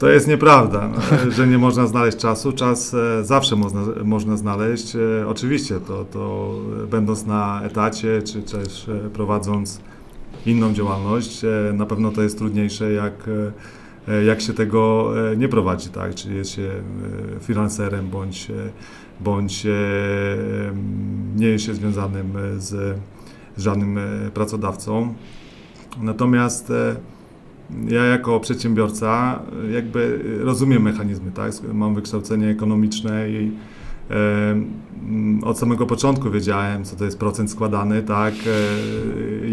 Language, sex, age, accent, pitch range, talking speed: Polish, male, 40-59, native, 105-115 Hz, 110 wpm